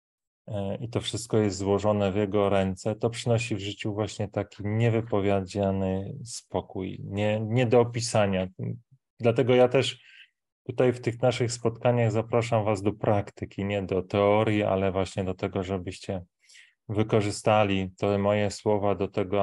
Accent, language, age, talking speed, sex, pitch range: native, Polish, 30-49, 140 wpm, male, 100-110 Hz